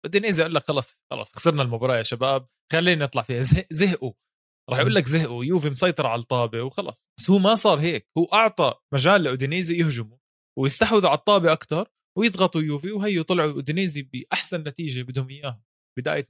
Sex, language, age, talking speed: male, Arabic, 20-39, 175 wpm